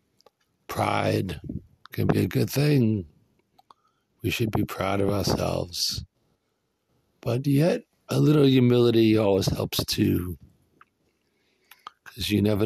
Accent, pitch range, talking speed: American, 100-125 Hz, 110 wpm